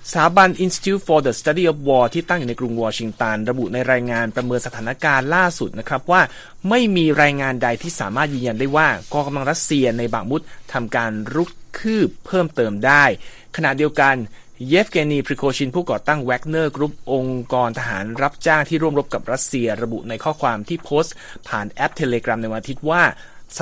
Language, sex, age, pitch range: Thai, male, 30-49, 120-155 Hz